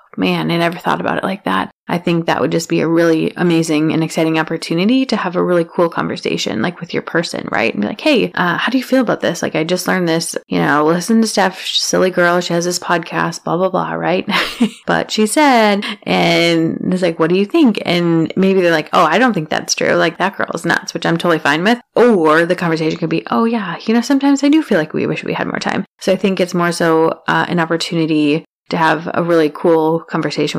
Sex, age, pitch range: female, 20-39, 160-190 Hz